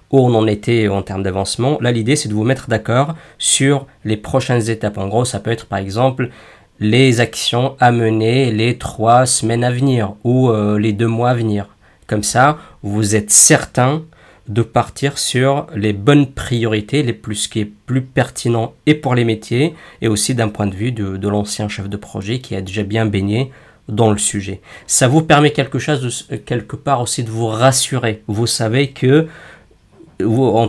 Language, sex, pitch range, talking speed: French, male, 105-130 Hz, 190 wpm